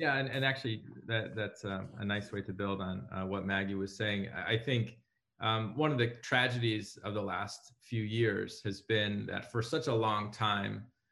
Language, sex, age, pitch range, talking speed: English, male, 20-39, 100-120 Hz, 200 wpm